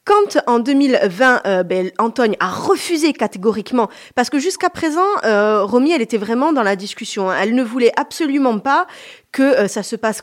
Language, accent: French, French